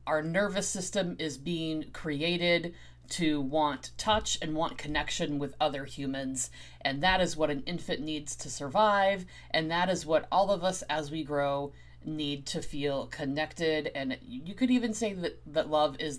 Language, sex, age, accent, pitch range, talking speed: English, female, 30-49, American, 135-180 Hz, 175 wpm